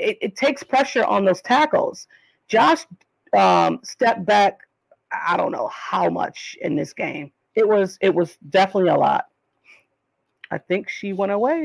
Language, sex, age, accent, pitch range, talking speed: English, female, 40-59, American, 175-230 Hz, 160 wpm